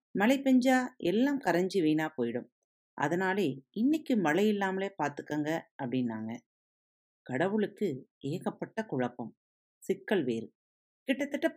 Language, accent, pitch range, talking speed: Tamil, native, 130-210 Hz, 95 wpm